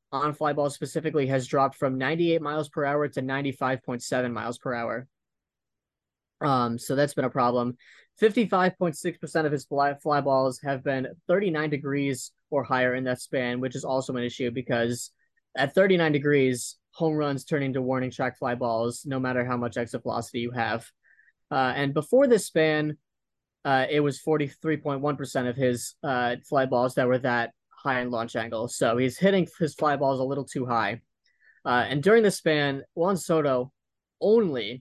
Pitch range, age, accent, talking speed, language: 125-150 Hz, 20-39, American, 175 wpm, English